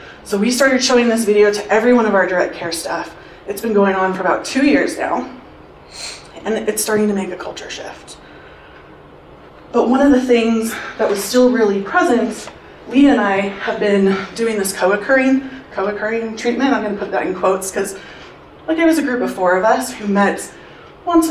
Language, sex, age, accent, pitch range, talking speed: English, female, 20-39, American, 195-245 Hz, 200 wpm